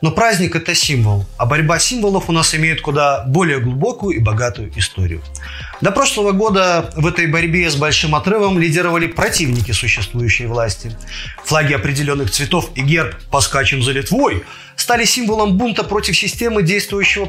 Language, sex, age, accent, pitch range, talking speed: Russian, male, 30-49, native, 125-185 Hz, 150 wpm